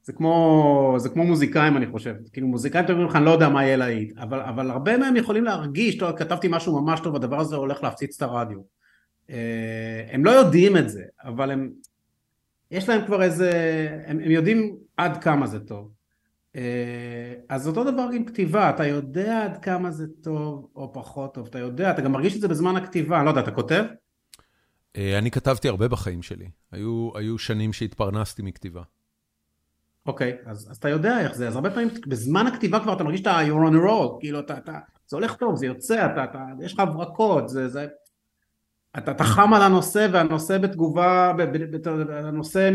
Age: 30-49